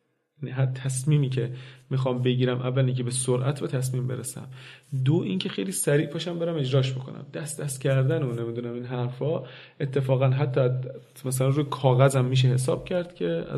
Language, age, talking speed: Persian, 30-49, 160 wpm